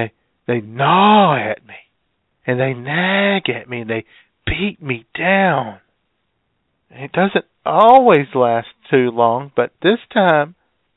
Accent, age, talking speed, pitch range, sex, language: American, 50-69, 125 wpm, 115-175 Hz, male, English